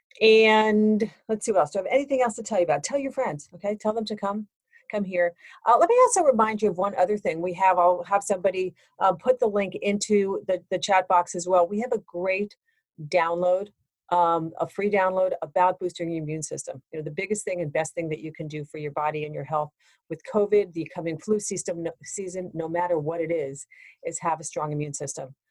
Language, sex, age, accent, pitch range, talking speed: English, female, 40-59, American, 165-210 Hz, 235 wpm